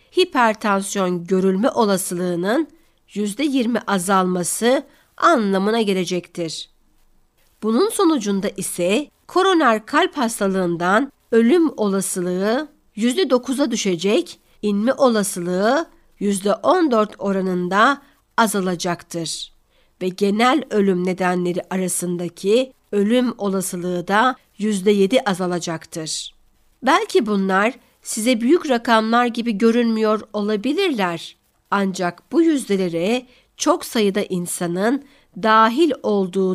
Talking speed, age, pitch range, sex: 85 wpm, 60-79, 185-245 Hz, female